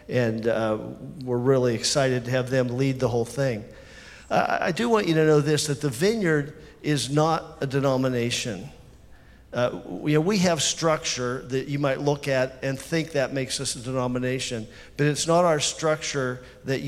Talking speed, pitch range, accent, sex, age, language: 180 wpm, 125-150 Hz, American, male, 50-69, English